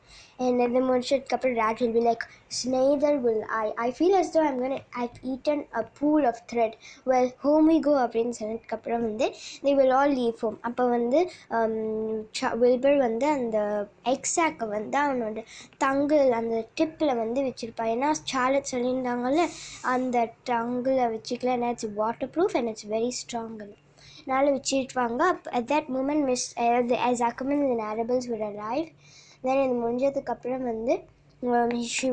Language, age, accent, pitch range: Tamil, 20-39, native, 230-265 Hz